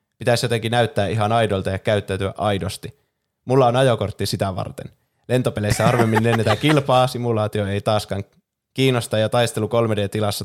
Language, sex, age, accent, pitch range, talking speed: Finnish, male, 20-39, native, 105-125 Hz, 140 wpm